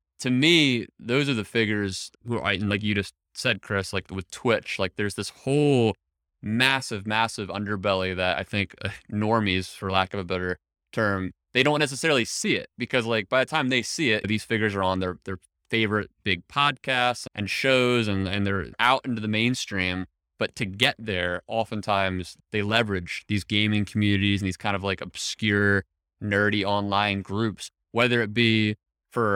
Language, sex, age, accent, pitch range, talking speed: English, male, 20-39, American, 95-115 Hz, 180 wpm